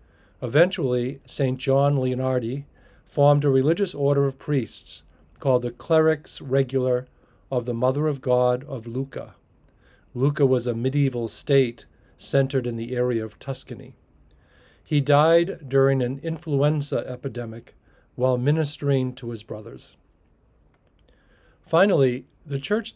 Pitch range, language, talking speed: 120-145 Hz, English, 120 wpm